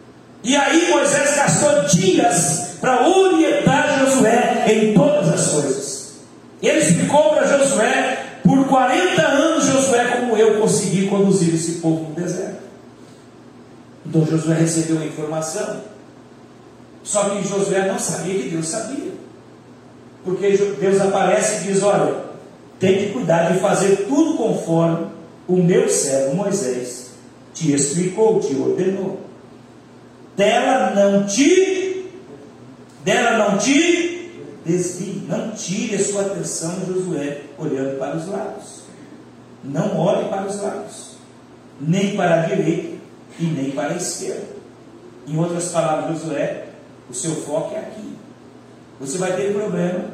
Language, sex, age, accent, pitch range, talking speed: Portuguese, male, 40-59, Brazilian, 165-210 Hz, 125 wpm